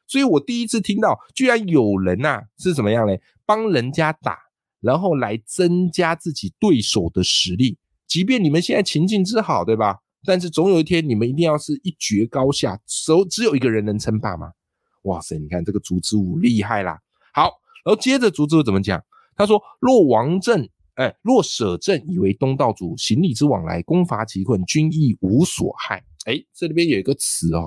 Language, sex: Chinese, male